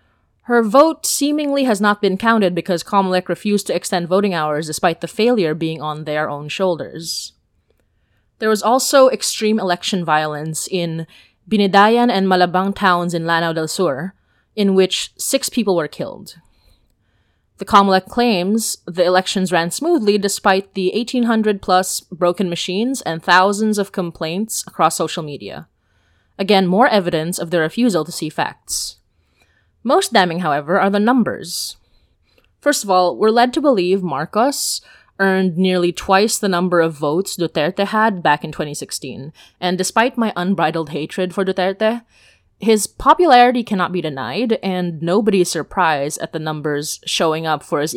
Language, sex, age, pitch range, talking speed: English, female, 20-39, 165-215 Hz, 150 wpm